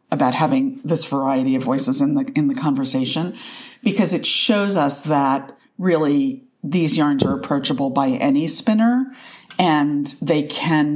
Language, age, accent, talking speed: English, 50-69, American, 150 wpm